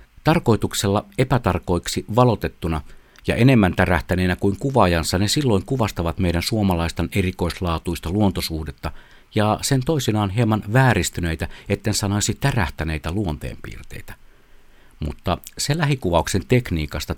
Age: 60-79